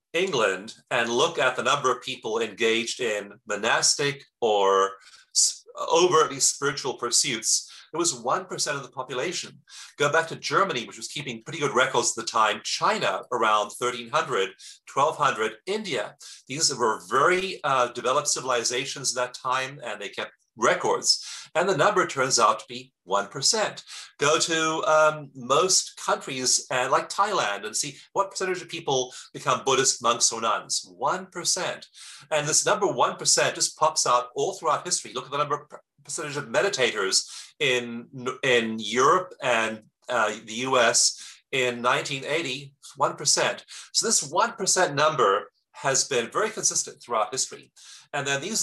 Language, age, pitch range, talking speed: English, 40-59, 125-155 Hz, 155 wpm